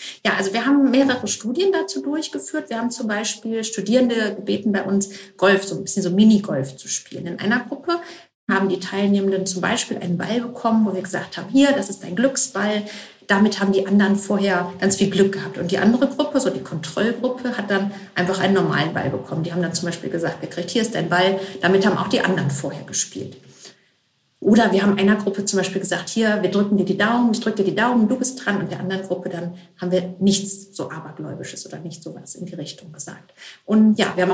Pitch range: 185-225 Hz